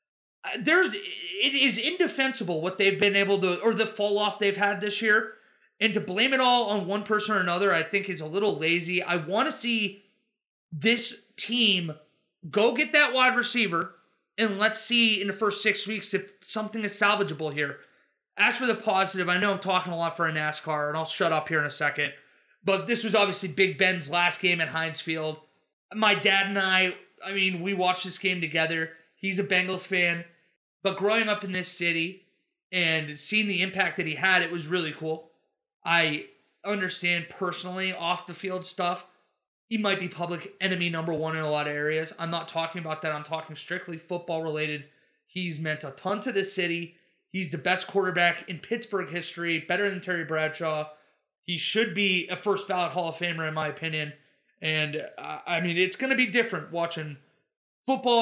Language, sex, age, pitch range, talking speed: English, male, 30-49, 165-205 Hz, 190 wpm